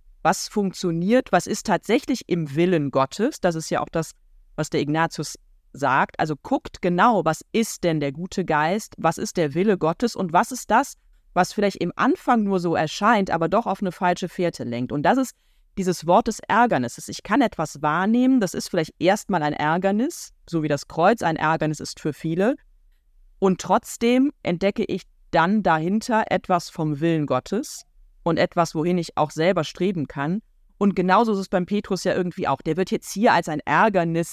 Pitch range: 160-205 Hz